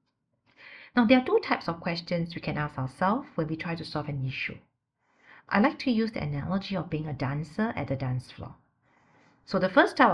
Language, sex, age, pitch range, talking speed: English, female, 50-69, 150-205 Hz, 215 wpm